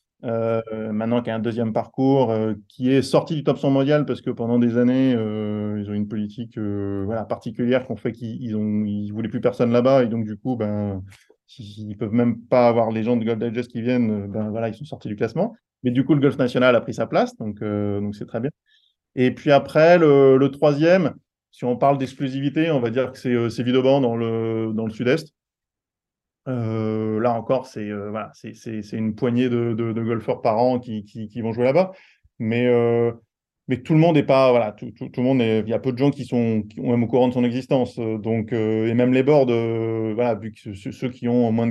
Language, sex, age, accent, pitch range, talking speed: French, male, 20-39, French, 110-125 Hz, 245 wpm